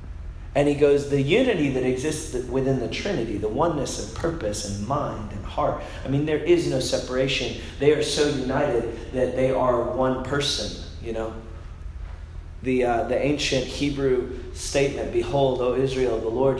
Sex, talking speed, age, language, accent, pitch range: male, 165 wpm, 30-49, English, American, 120-145 Hz